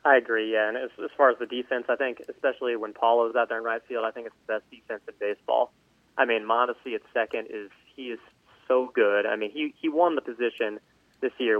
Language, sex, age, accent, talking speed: English, male, 20-39, American, 240 wpm